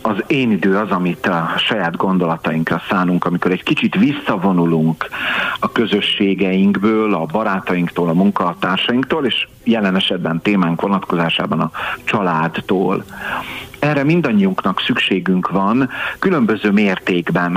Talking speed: 110 wpm